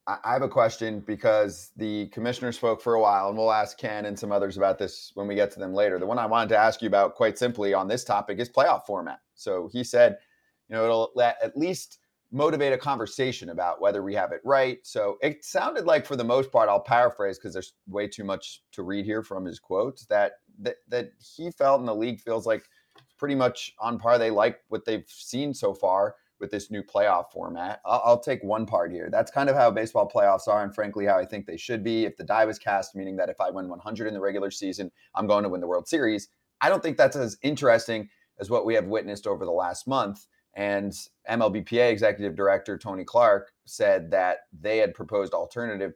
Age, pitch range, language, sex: 30-49, 100-125 Hz, English, male